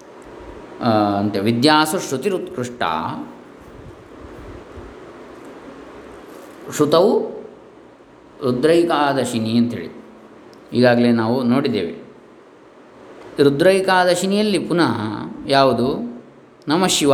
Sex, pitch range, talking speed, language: male, 115-140 Hz, 45 wpm, Kannada